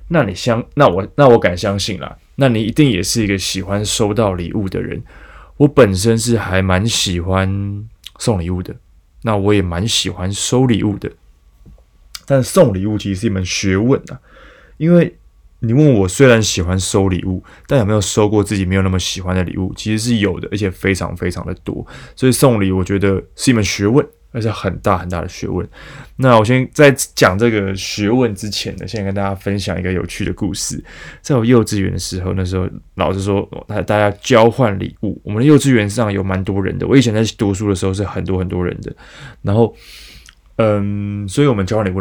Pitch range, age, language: 95-115 Hz, 20-39, Chinese